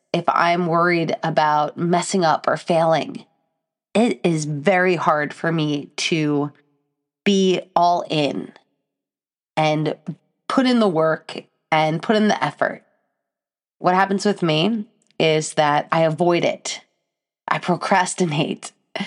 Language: English